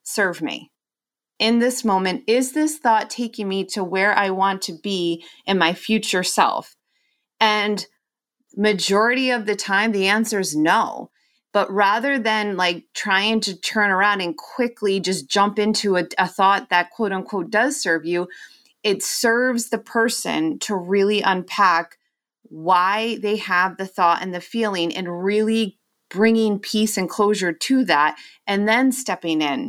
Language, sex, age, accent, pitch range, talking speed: English, female, 30-49, American, 175-215 Hz, 160 wpm